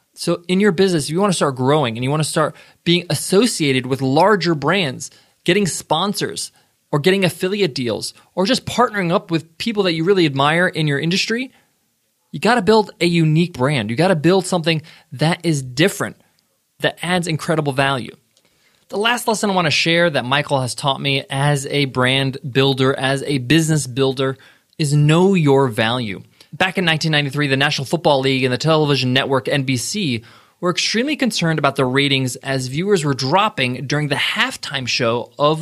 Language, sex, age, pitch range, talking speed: English, male, 20-39, 135-180 Hz, 185 wpm